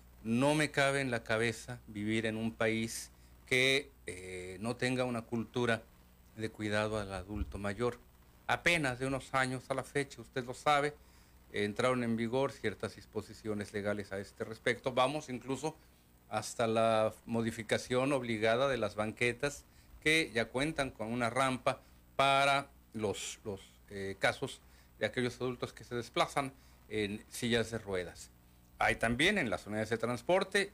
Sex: male